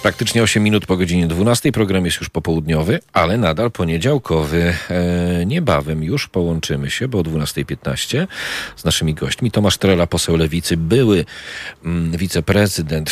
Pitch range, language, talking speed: 75-95 Hz, Polish, 135 wpm